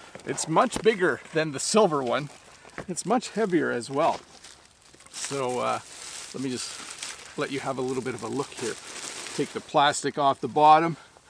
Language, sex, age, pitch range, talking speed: English, male, 40-59, 145-195 Hz, 175 wpm